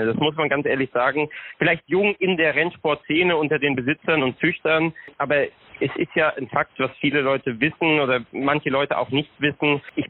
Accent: German